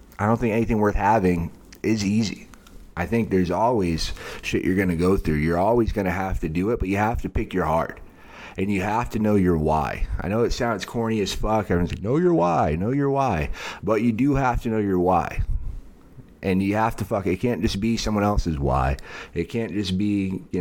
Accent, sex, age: American, male, 30-49